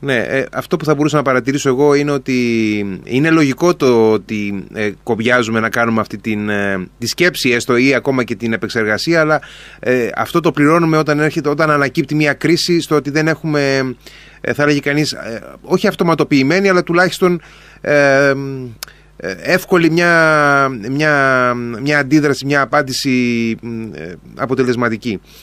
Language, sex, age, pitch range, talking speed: Greek, male, 30-49, 120-160 Hz, 130 wpm